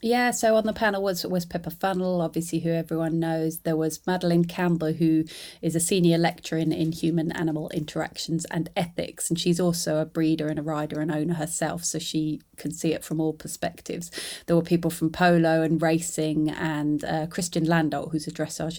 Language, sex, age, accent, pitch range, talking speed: English, female, 30-49, British, 155-170 Hz, 195 wpm